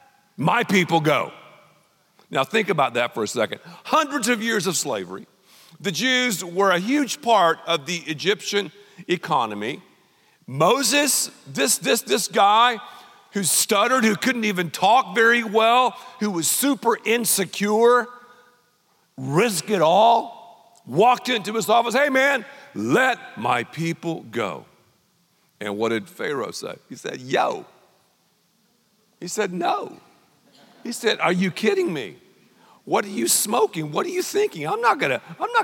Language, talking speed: English, 140 wpm